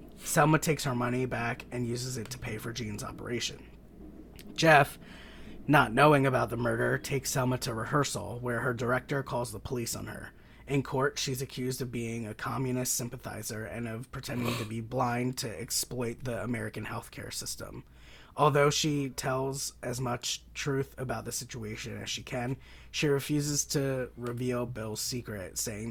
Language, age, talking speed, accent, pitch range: English, 30-49, 165 wpm, American, 110-130 Hz